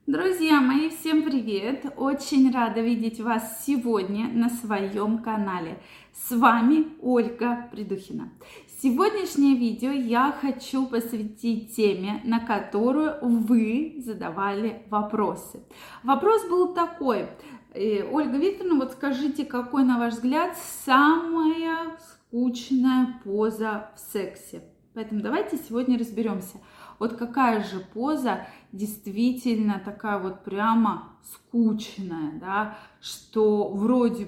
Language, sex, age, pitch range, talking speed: Russian, female, 20-39, 210-265 Hz, 105 wpm